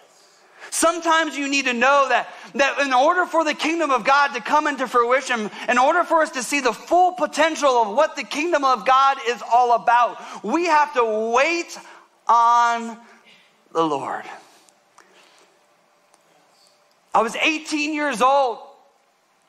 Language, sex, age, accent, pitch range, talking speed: English, male, 40-59, American, 235-300 Hz, 150 wpm